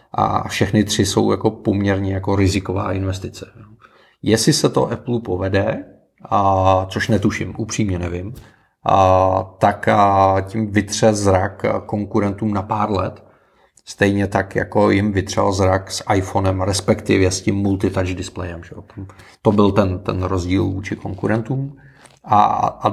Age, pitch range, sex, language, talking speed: 40-59, 95-110 Hz, male, Czech, 135 wpm